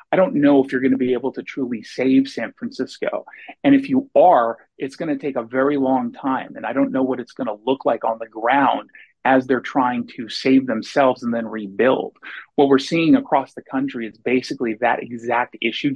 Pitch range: 130-195 Hz